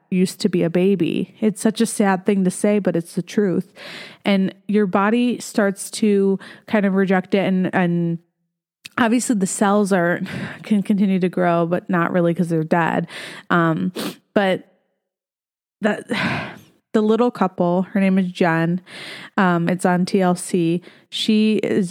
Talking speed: 155 wpm